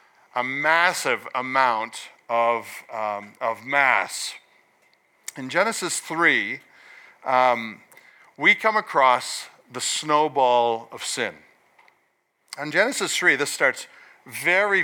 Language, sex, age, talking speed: English, male, 50-69, 95 wpm